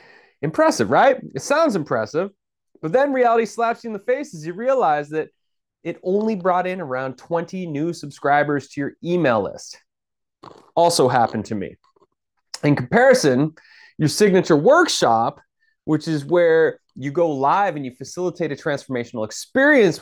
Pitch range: 140-190 Hz